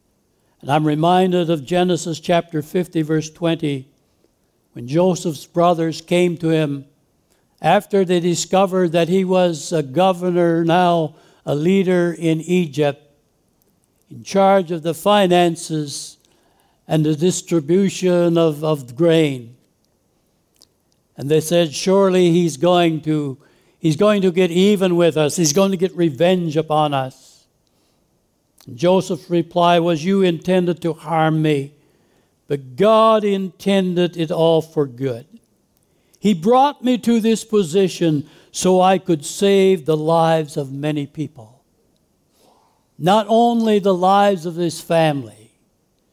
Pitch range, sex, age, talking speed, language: 155-185 Hz, male, 60-79, 125 wpm, English